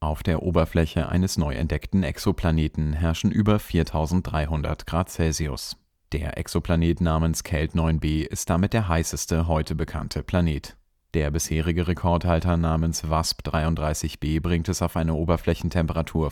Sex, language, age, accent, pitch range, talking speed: male, German, 30-49, German, 80-85 Hz, 130 wpm